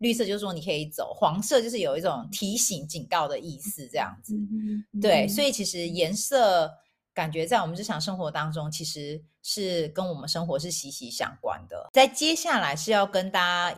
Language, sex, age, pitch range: Chinese, female, 30-49, 160-225 Hz